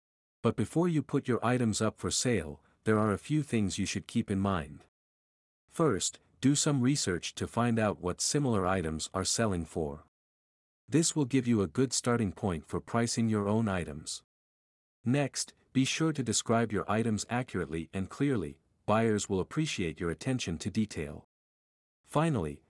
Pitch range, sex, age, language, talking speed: 90-125 Hz, male, 50-69, English, 165 wpm